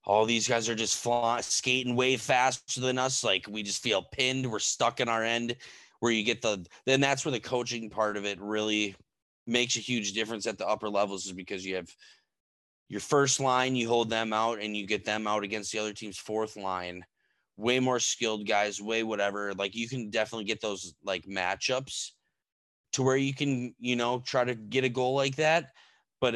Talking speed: 205 wpm